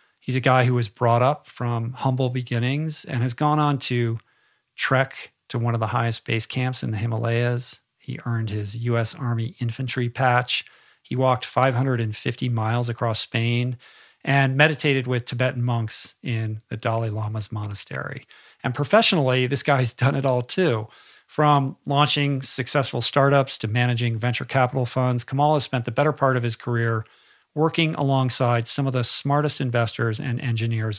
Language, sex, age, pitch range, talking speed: English, male, 40-59, 115-135 Hz, 160 wpm